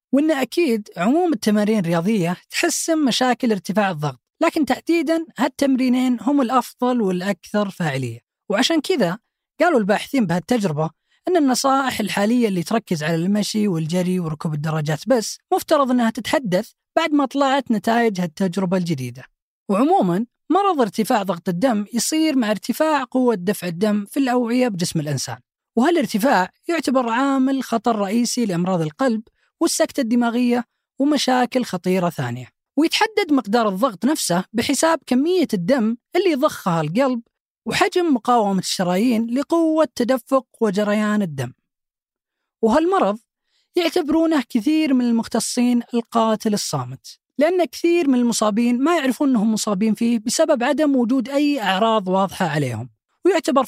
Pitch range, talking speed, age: 200-280 Hz, 120 wpm, 20-39